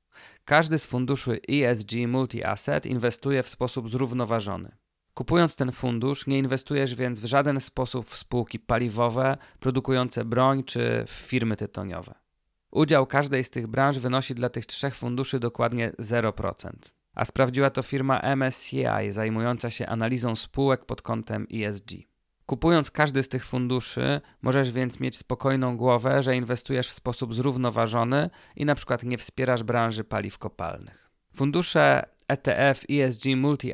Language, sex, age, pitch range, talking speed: Polish, male, 30-49, 115-135 Hz, 140 wpm